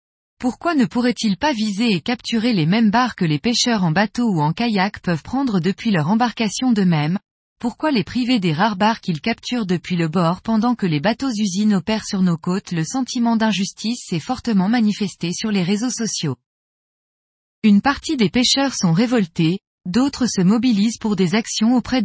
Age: 20-39